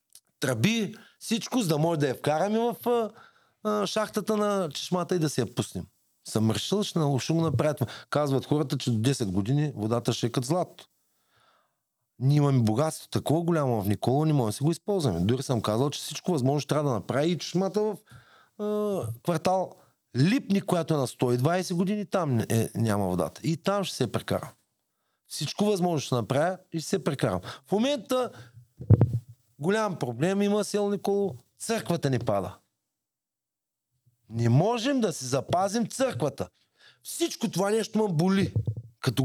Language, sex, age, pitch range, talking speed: Bulgarian, male, 40-59, 120-200 Hz, 160 wpm